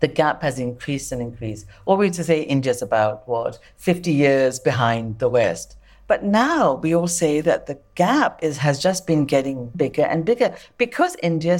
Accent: British